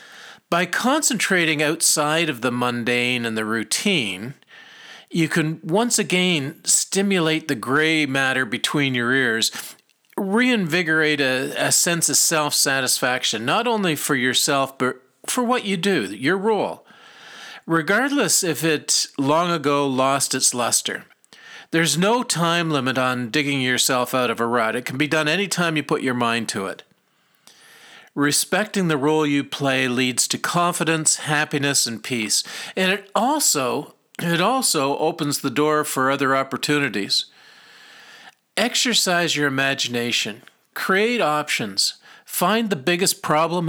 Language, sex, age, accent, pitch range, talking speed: English, male, 50-69, American, 140-180 Hz, 135 wpm